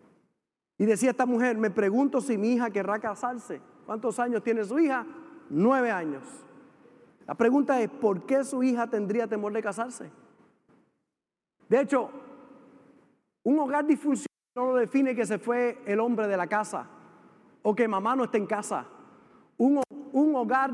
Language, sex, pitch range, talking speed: Spanish, male, 225-300 Hz, 160 wpm